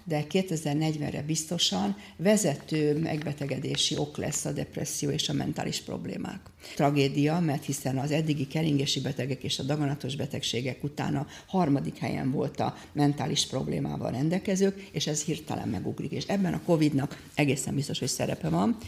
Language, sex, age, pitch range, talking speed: Hungarian, female, 60-79, 145-175 Hz, 145 wpm